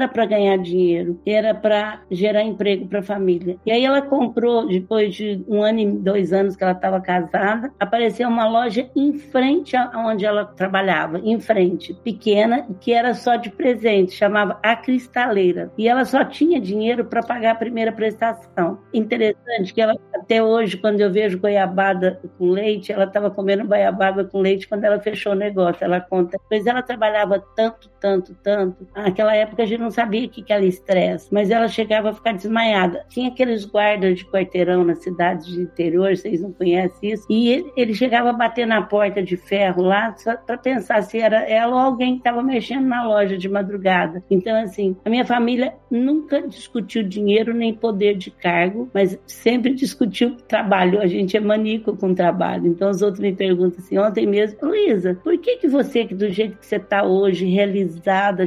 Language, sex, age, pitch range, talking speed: Portuguese, female, 60-79, 195-235 Hz, 190 wpm